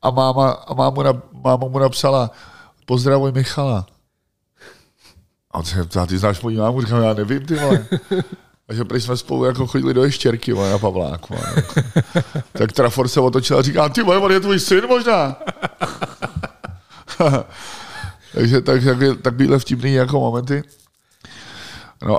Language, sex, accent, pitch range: Czech, male, native, 100-135 Hz